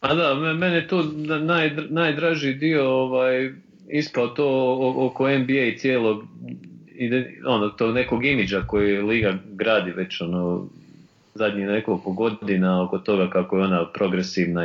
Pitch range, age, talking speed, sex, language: 95-130 Hz, 30-49, 125 wpm, male, English